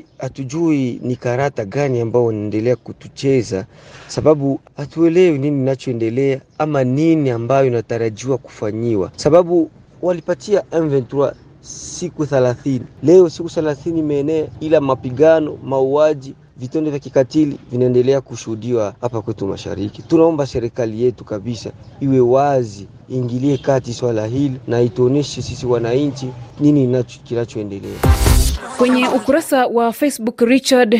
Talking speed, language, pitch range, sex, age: 110 wpm, Swahili, 135-195 Hz, male, 40-59